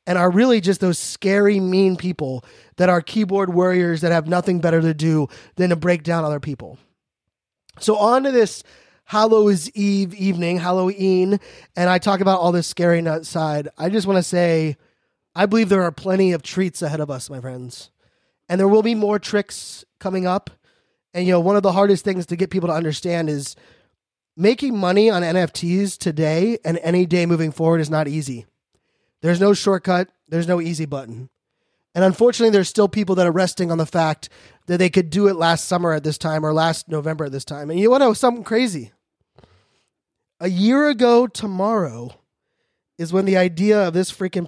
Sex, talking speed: male, 195 wpm